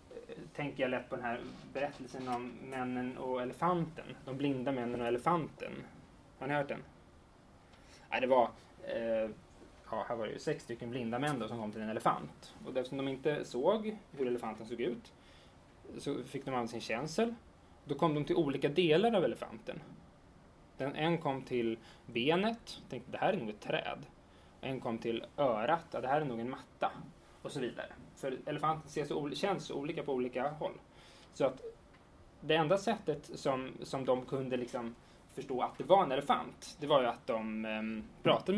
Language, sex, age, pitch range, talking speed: Swedish, male, 20-39, 120-155 Hz, 185 wpm